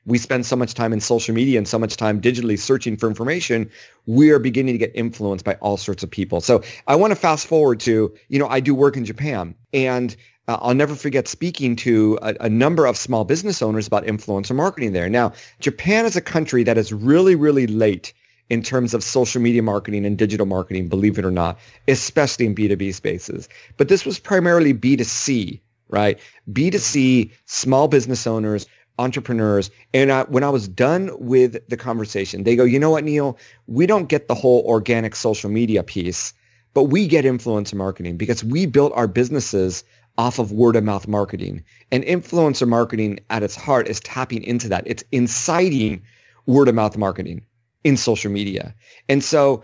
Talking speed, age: 190 wpm, 40-59